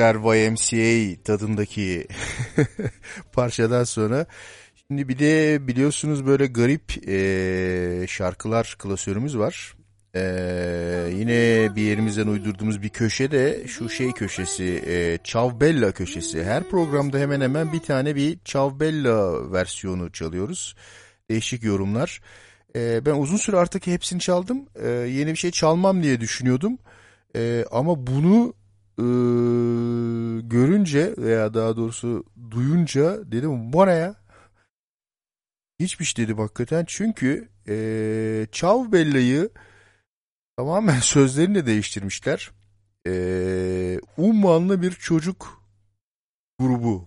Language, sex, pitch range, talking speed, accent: Turkish, male, 100-145 Hz, 100 wpm, native